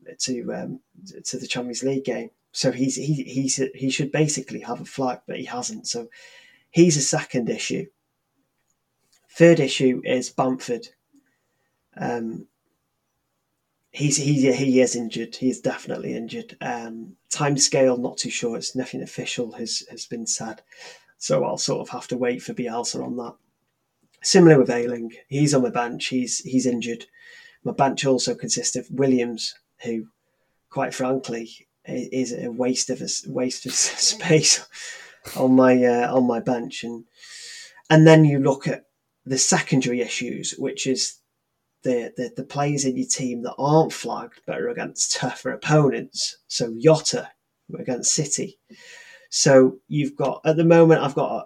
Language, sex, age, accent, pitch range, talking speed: English, male, 20-39, British, 125-150 Hz, 155 wpm